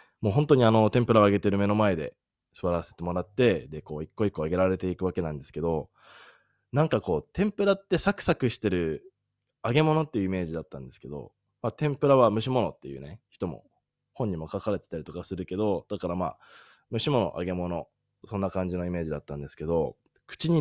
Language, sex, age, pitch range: Japanese, male, 20-39, 90-130 Hz